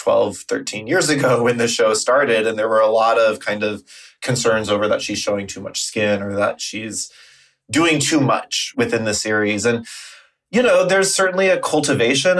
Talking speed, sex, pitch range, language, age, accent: 190 wpm, male, 110-145 Hz, English, 20-39, American